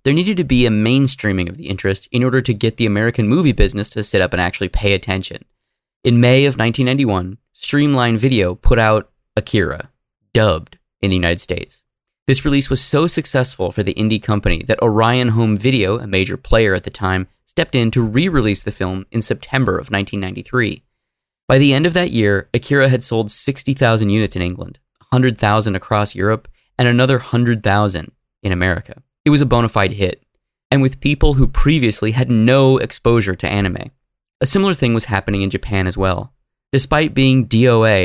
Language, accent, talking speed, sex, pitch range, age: English, American, 185 wpm, male, 100-130 Hz, 20-39